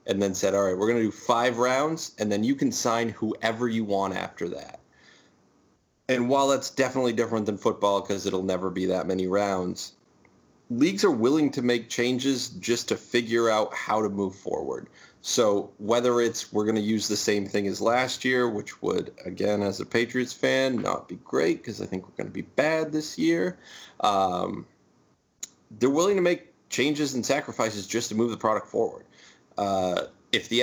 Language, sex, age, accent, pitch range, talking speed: English, male, 30-49, American, 100-130 Hz, 195 wpm